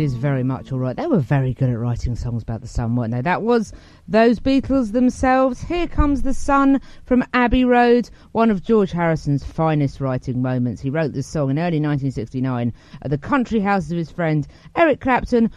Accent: British